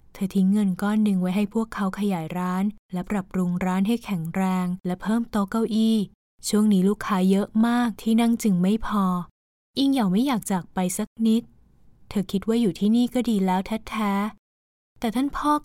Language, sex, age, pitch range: Thai, female, 20-39, 185-225 Hz